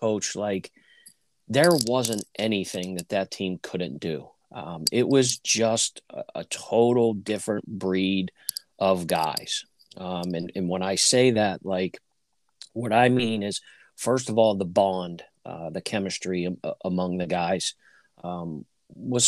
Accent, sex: American, male